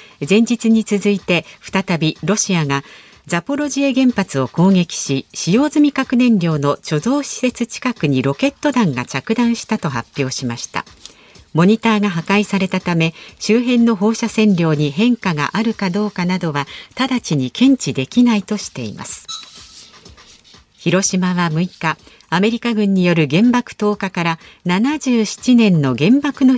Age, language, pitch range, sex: 50-69, Japanese, 160-235 Hz, female